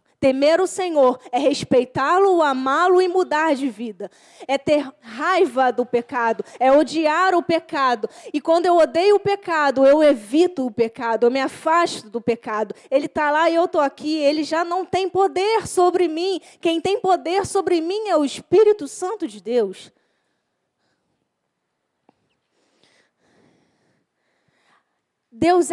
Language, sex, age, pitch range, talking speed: Portuguese, female, 20-39, 275-370 Hz, 140 wpm